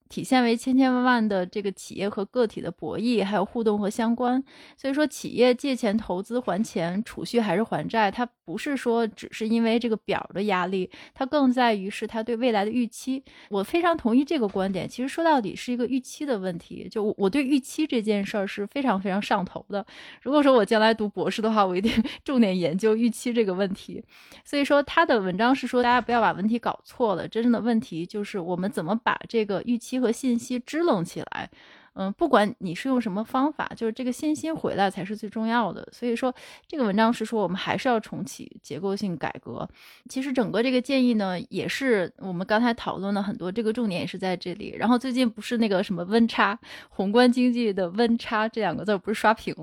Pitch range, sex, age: 200-250 Hz, female, 20-39